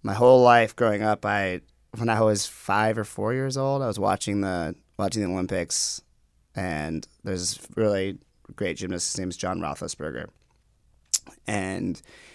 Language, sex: English, male